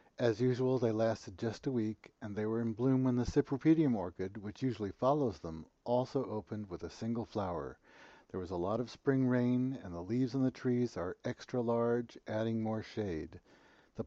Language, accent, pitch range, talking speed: English, American, 105-130 Hz, 195 wpm